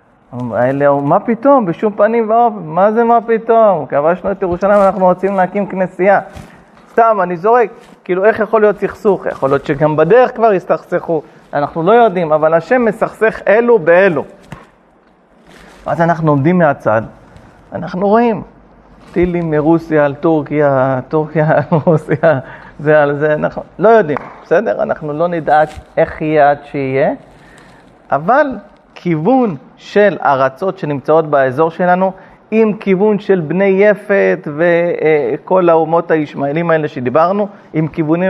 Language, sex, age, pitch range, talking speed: Hebrew, male, 40-59, 155-210 Hz, 135 wpm